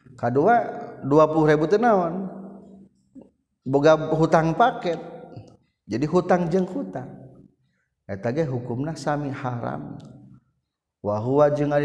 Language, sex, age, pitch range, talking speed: Indonesian, male, 50-69, 105-140 Hz, 95 wpm